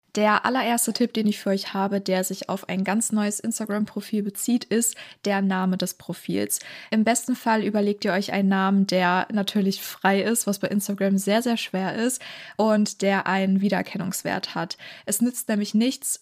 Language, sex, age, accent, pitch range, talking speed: German, female, 20-39, German, 195-220 Hz, 180 wpm